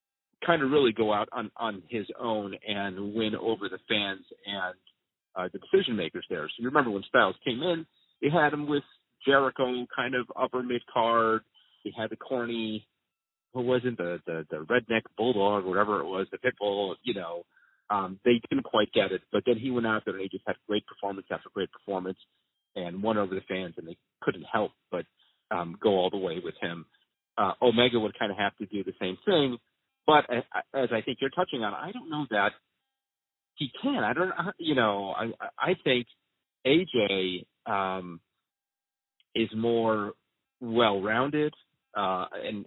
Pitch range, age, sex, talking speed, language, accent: 100-130 Hz, 40-59, male, 190 wpm, English, American